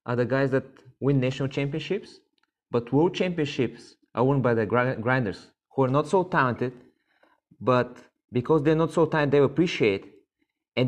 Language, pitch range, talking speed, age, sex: English, 120-150 Hz, 160 wpm, 20-39, male